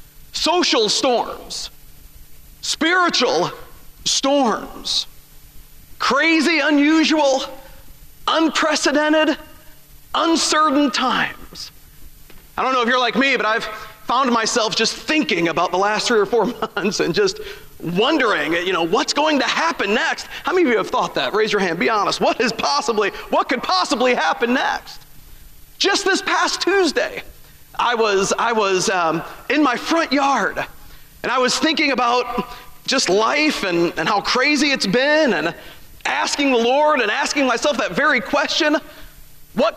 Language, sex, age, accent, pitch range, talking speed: English, male, 40-59, American, 240-310 Hz, 145 wpm